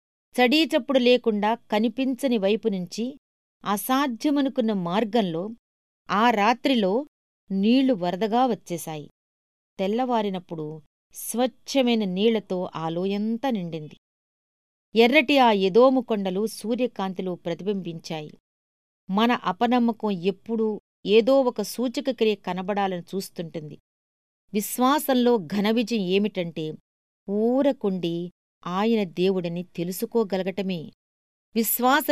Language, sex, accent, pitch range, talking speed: Telugu, female, native, 185-240 Hz, 70 wpm